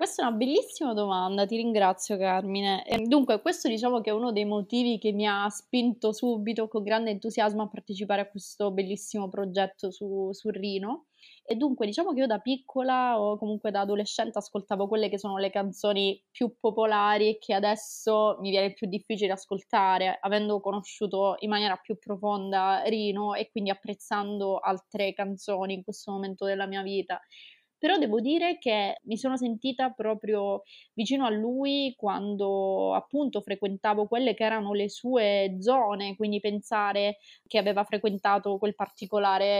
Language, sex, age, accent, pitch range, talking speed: Italian, female, 20-39, native, 200-225 Hz, 160 wpm